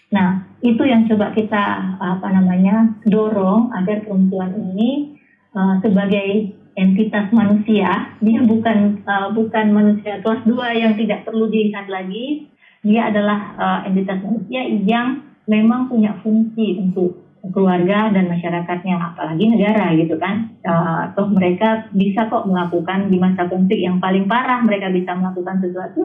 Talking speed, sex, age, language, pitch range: 140 wpm, female, 30-49, Indonesian, 185-220 Hz